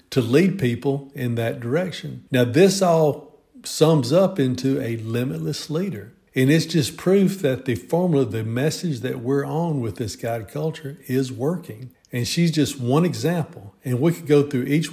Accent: American